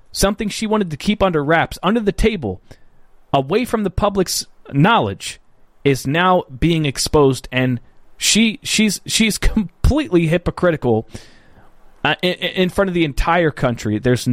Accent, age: American, 30-49